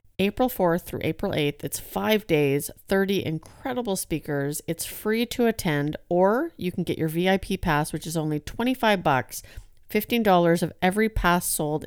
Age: 40-59